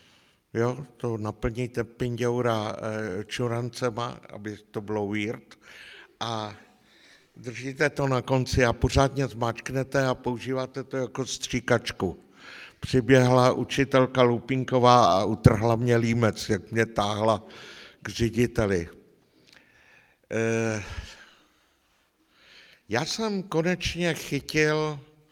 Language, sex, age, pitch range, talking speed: Czech, male, 60-79, 105-130 Hz, 90 wpm